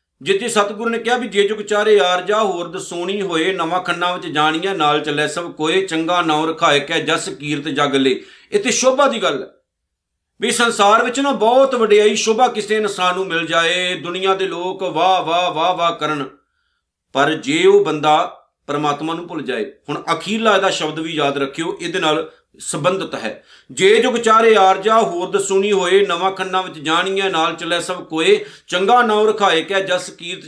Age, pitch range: 50-69, 155-210 Hz